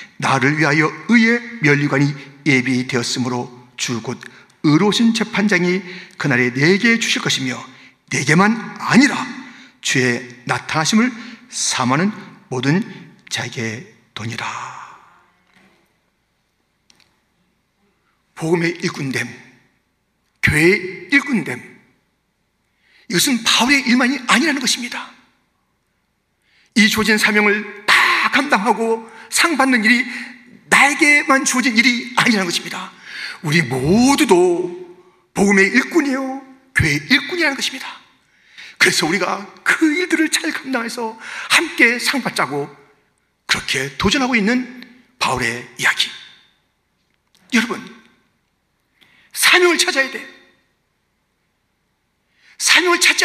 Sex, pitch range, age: male, 155-255 Hz, 40-59